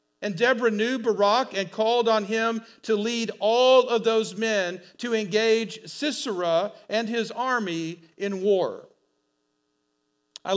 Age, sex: 50-69, male